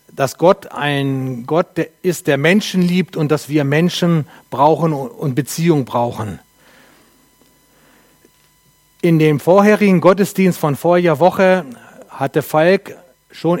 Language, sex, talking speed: German, male, 115 wpm